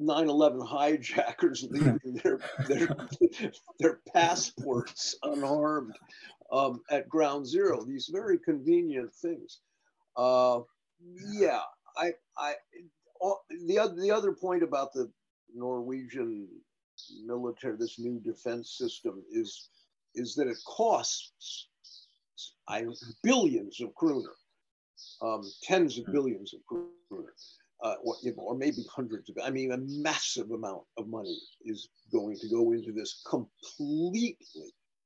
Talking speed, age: 115 wpm, 50-69